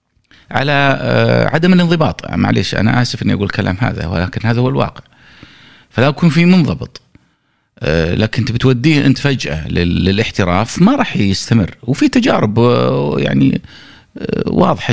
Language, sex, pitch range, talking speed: Arabic, male, 90-135 Hz, 125 wpm